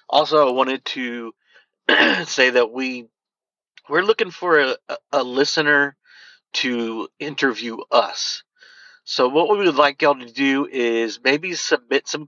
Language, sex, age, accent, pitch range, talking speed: English, male, 40-59, American, 115-145 Hz, 140 wpm